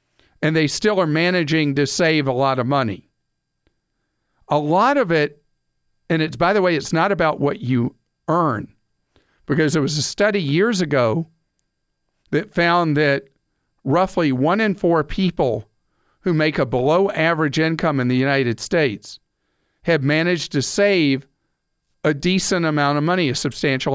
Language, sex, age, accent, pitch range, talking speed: English, male, 50-69, American, 135-175 Hz, 155 wpm